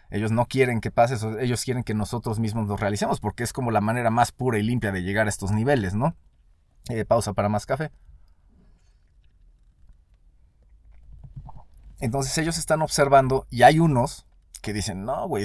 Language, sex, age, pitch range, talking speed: Spanish, male, 30-49, 105-145 Hz, 170 wpm